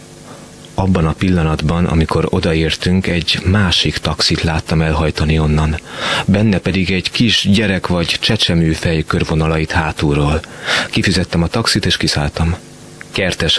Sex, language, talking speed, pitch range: male, Hungarian, 120 wpm, 75-90 Hz